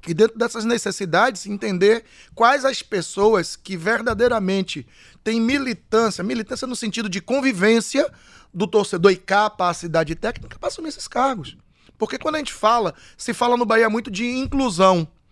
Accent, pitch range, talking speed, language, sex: Brazilian, 175-225 Hz, 150 wpm, Portuguese, male